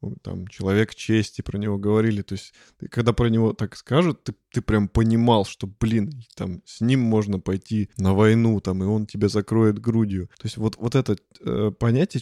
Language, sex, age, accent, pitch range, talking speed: Russian, male, 20-39, native, 105-120 Hz, 185 wpm